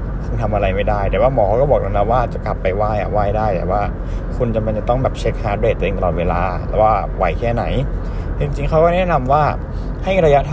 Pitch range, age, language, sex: 95-120 Hz, 60-79, Thai, male